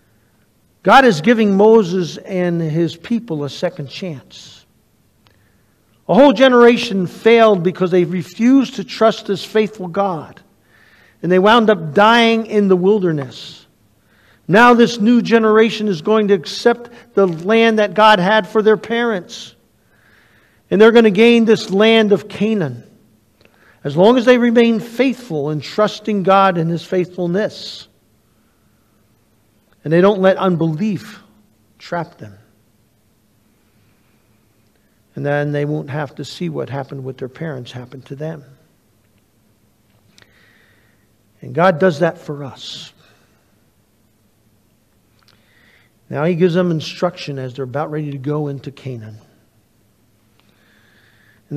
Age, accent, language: 50-69, American, English